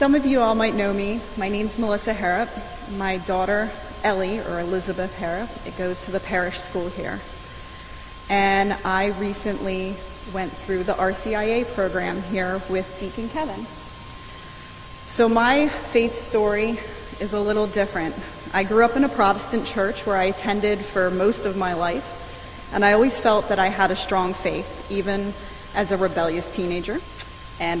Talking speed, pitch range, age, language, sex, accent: 160 wpm, 185-215 Hz, 30-49, English, female, American